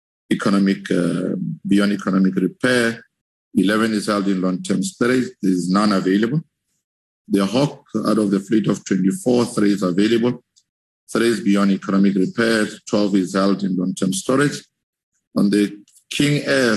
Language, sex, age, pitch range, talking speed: English, male, 50-69, 95-120 Hz, 145 wpm